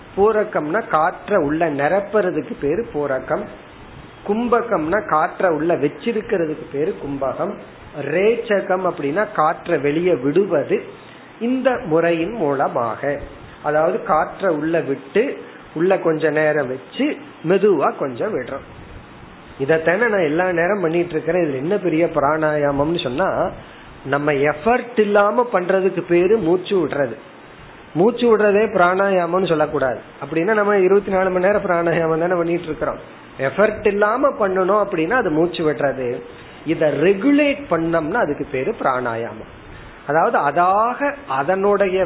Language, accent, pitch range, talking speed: Tamil, native, 150-205 Hz, 110 wpm